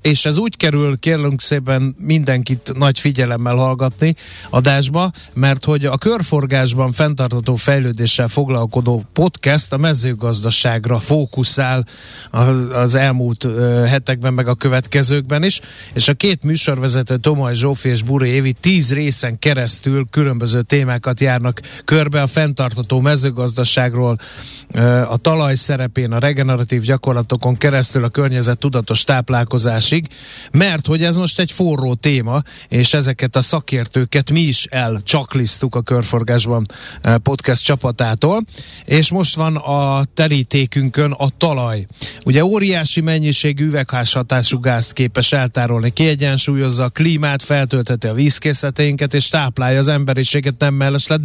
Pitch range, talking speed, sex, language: 125-145 Hz, 120 wpm, male, Hungarian